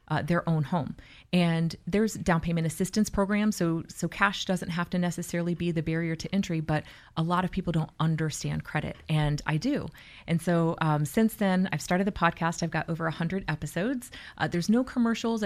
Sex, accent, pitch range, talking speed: female, American, 160-190 Hz, 200 wpm